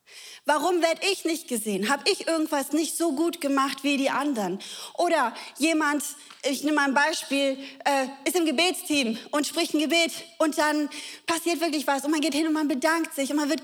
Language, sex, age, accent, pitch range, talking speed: German, female, 30-49, German, 275-335 Hz, 200 wpm